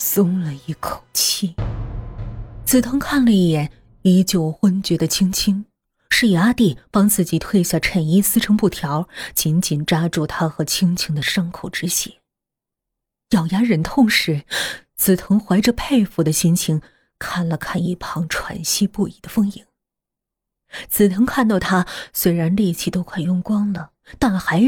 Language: Chinese